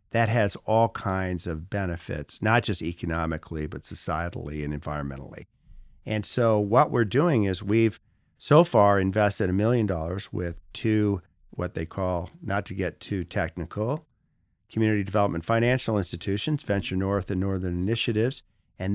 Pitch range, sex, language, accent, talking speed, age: 90-110 Hz, male, English, American, 145 wpm, 50-69